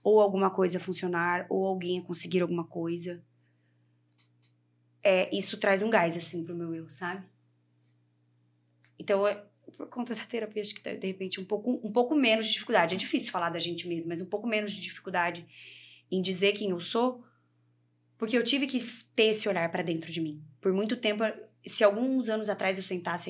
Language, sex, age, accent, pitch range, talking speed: Portuguese, female, 20-39, Brazilian, 170-205 Hz, 185 wpm